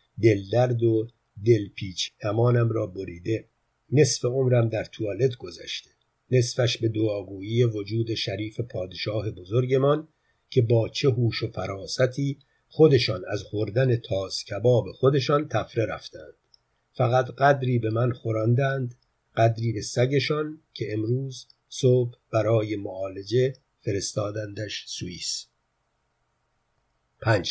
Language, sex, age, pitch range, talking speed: Persian, male, 50-69, 110-130 Hz, 105 wpm